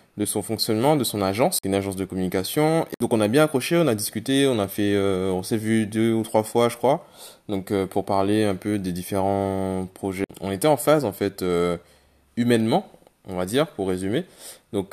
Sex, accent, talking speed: male, French, 220 wpm